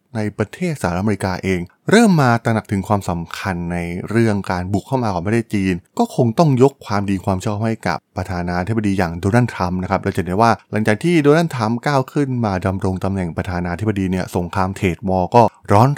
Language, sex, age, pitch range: Thai, male, 20-39, 95-115 Hz